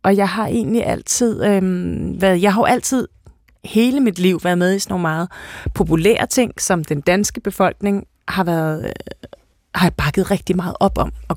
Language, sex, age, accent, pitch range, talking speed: Danish, female, 30-49, native, 170-200 Hz, 185 wpm